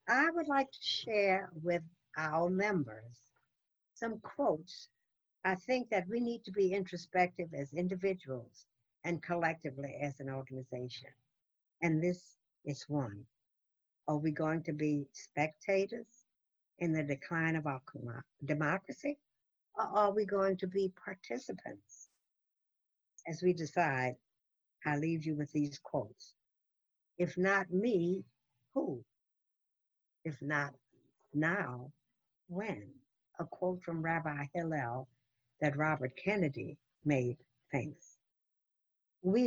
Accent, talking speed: American, 115 wpm